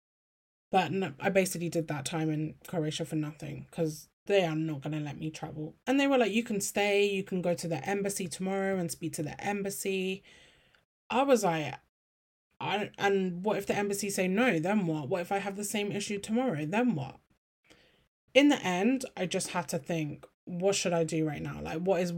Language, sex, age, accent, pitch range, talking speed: English, male, 10-29, British, 160-195 Hz, 215 wpm